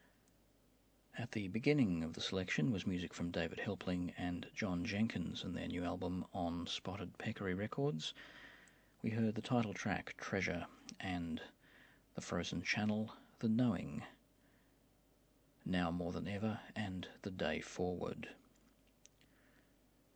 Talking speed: 120 wpm